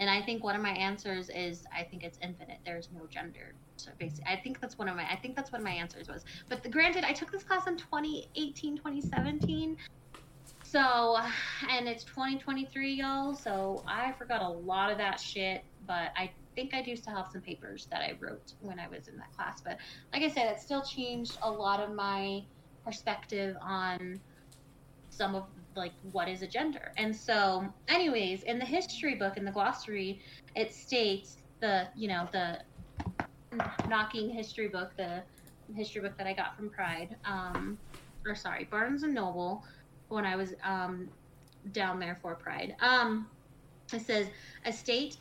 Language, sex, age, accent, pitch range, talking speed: English, female, 20-39, American, 180-235 Hz, 185 wpm